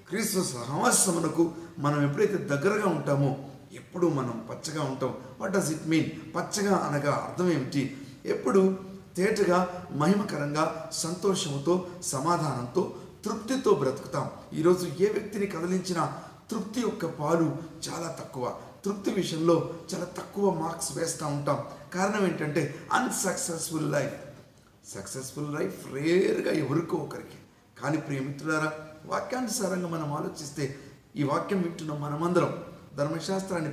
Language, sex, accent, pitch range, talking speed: Telugu, male, native, 145-185 Hz, 110 wpm